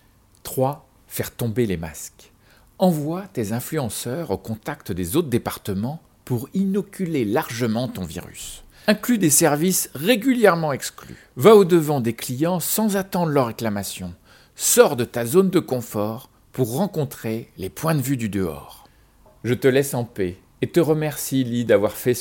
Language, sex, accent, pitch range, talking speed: French, male, French, 110-165 Hz, 150 wpm